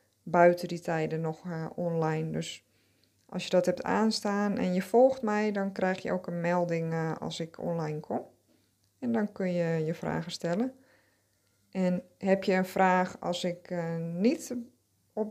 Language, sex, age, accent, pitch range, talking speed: Dutch, female, 20-39, Dutch, 165-215 Hz, 175 wpm